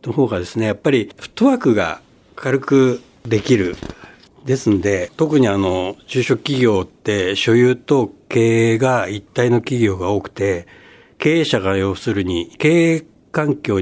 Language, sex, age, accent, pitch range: Japanese, male, 60-79, native, 100-145 Hz